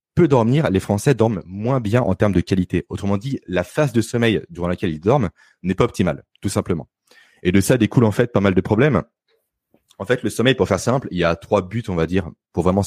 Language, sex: French, male